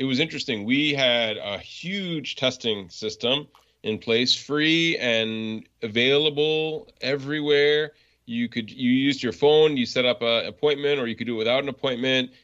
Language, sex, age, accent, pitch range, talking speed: English, male, 30-49, American, 105-140 Hz, 165 wpm